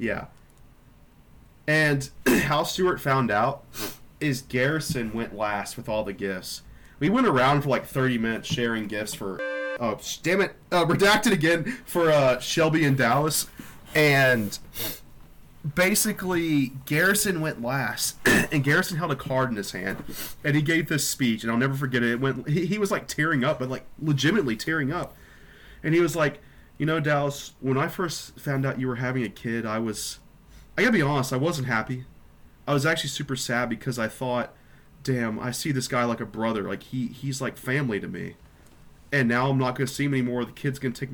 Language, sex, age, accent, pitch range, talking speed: English, male, 30-49, American, 120-150 Hz, 185 wpm